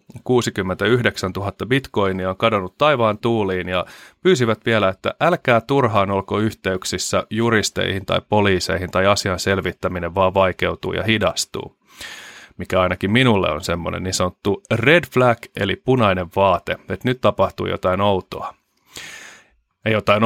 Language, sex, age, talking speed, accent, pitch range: Finnish, male, 30-49, 130 wpm, native, 95-115 Hz